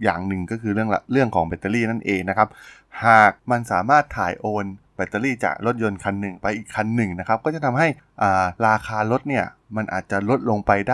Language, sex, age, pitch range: Thai, male, 20-39, 95-125 Hz